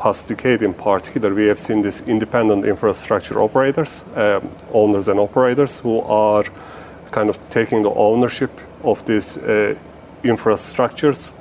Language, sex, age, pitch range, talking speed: English, male, 40-59, 100-115 Hz, 130 wpm